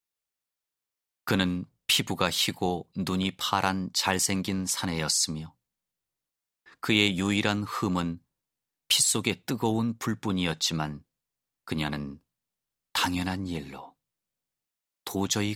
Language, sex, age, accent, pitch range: Korean, male, 30-49, native, 80-100 Hz